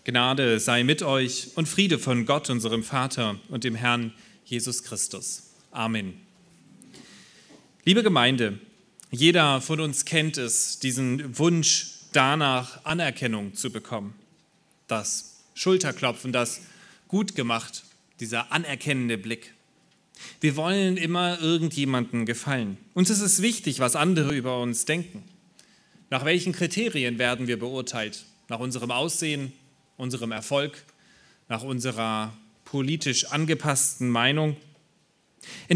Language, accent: German, German